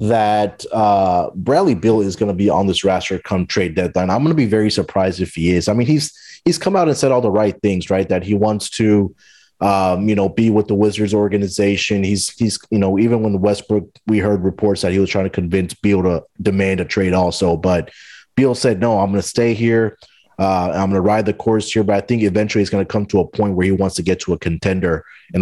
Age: 30-49